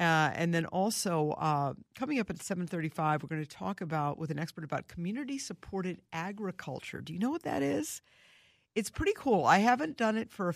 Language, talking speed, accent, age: English, 215 wpm, American, 50-69